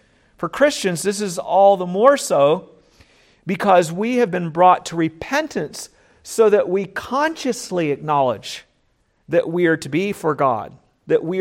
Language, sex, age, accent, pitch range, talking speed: English, male, 50-69, American, 145-185 Hz, 155 wpm